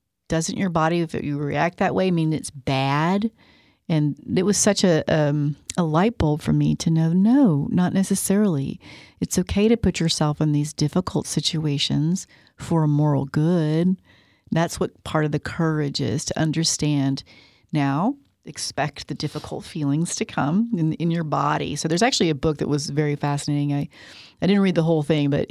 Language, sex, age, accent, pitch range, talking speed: English, female, 40-59, American, 150-185 Hz, 180 wpm